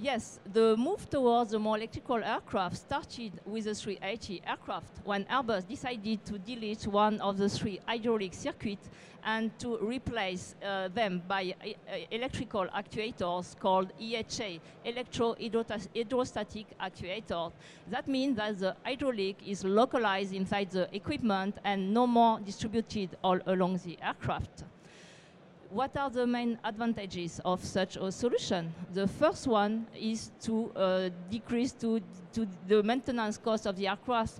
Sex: female